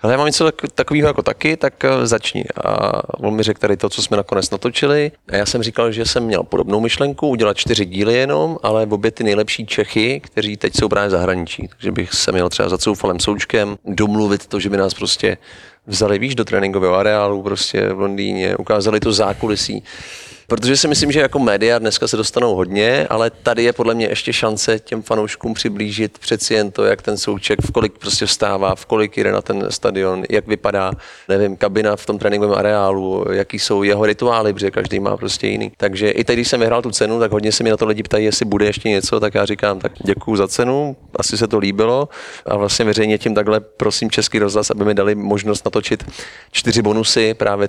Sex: male